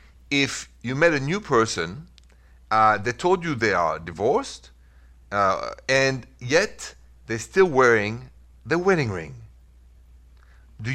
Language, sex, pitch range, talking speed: English, male, 85-130 Hz, 125 wpm